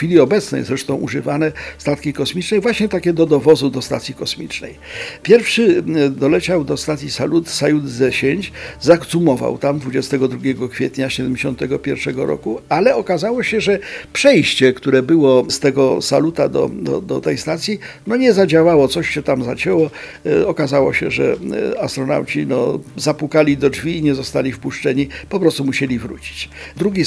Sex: male